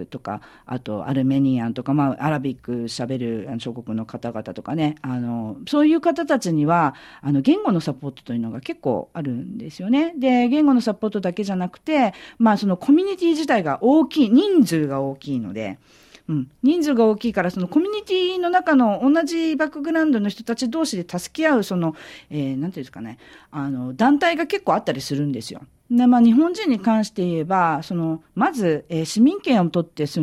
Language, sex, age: Japanese, female, 40-59